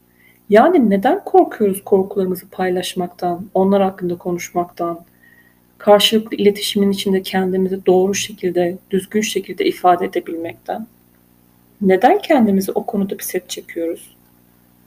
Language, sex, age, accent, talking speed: Turkish, female, 40-59, native, 100 wpm